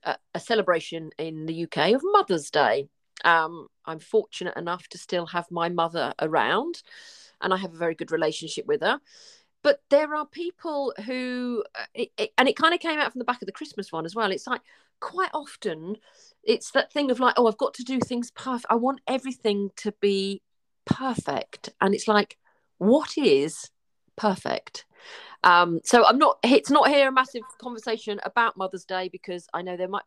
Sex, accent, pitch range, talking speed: female, British, 175-260 Hz, 185 wpm